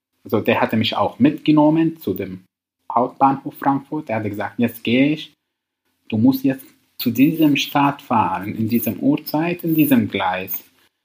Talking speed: 160 wpm